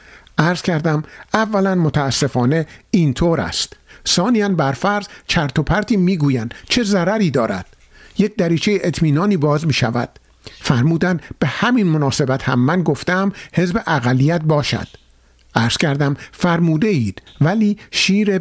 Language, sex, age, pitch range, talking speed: Persian, male, 50-69, 135-185 Hz, 120 wpm